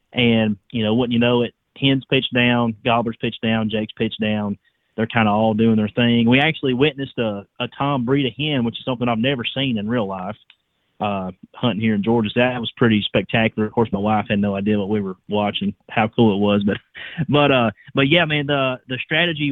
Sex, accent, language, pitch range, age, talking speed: male, American, English, 110-130 Hz, 30-49, 230 wpm